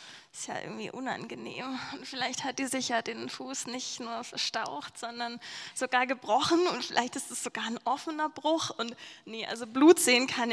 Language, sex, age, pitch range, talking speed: German, female, 10-29, 210-260 Hz, 180 wpm